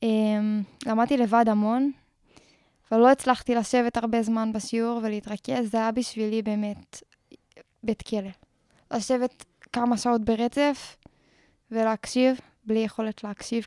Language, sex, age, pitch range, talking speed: Hebrew, female, 10-29, 225-255 Hz, 115 wpm